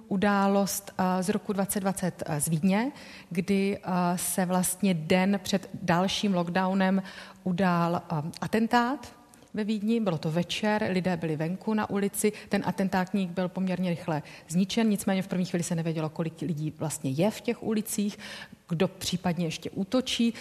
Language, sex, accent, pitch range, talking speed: Czech, female, native, 175-200 Hz, 140 wpm